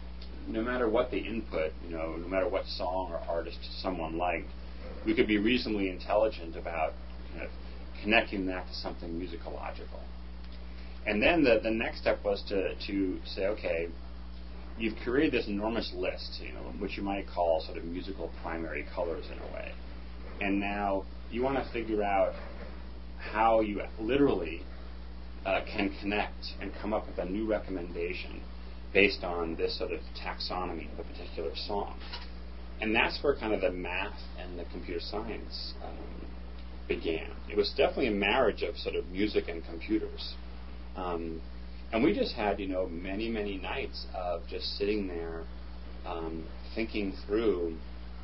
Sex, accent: male, American